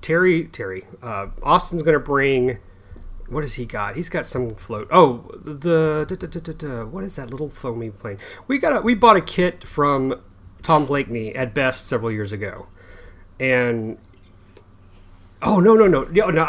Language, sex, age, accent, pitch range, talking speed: English, male, 30-49, American, 115-155 Hz, 180 wpm